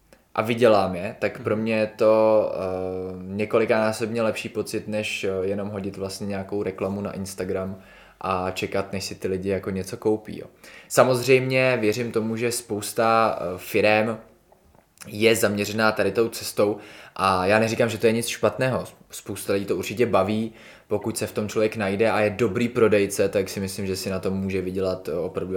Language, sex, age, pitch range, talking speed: Czech, male, 20-39, 95-110 Hz, 175 wpm